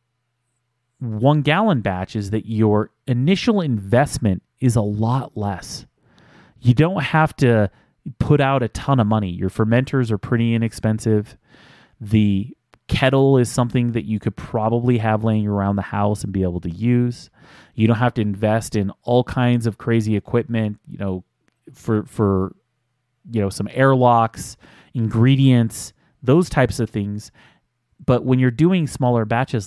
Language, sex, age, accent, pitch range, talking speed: English, male, 30-49, American, 105-125 Hz, 150 wpm